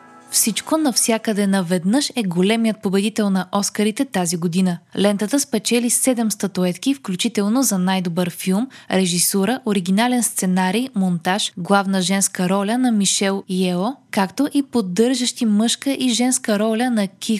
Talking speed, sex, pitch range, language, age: 130 wpm, female, 190-245 Hz, Bulgarian, 20-39